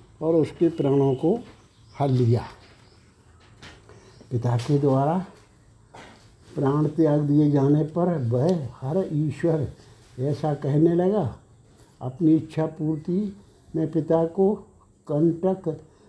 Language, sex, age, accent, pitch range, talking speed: Hindi, male, 60-79, native, 135-170 Hz, 100 wpm